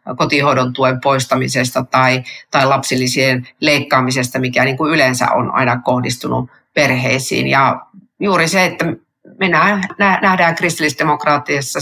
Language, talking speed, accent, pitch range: Finnish, 105 wpm, native, 140-165 Hz